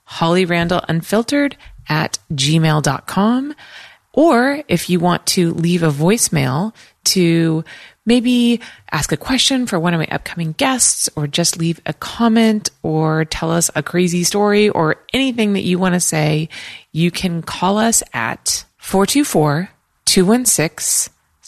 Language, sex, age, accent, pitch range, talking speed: English, female, 30-49, American, 160-210 Hz, 135 wpm